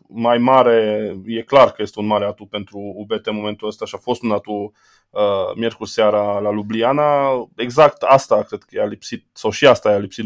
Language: Romanian